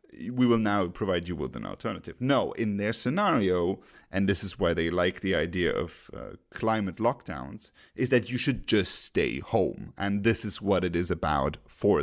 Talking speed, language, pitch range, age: 195 wpm, English, 95-120 Hz, 30-49